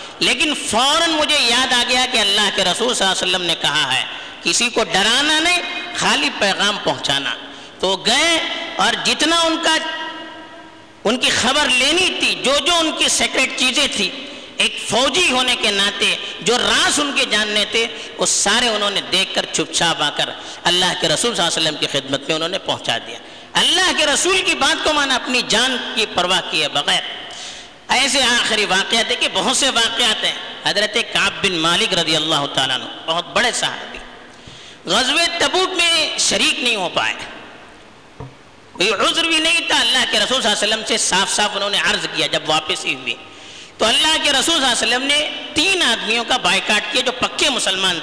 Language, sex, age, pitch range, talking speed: Urdu, female, 50-69, 200-305 Hz, 130 wpm